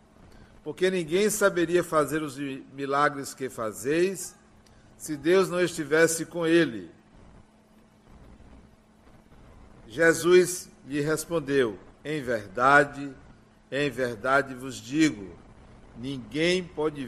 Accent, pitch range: Brazilian, 130-165 Hz